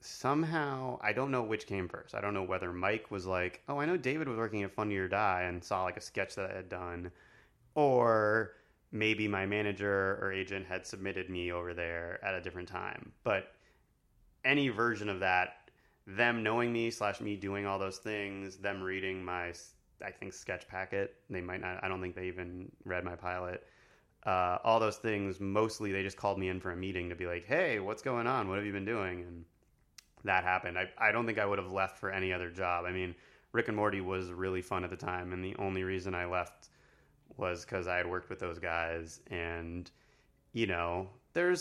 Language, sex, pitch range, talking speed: English, male, 90-110 Hz, 215 wpm